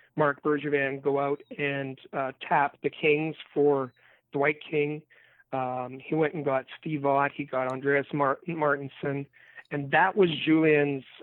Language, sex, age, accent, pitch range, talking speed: English, male, 40-59, American, 140-160 Hz, 150 wpm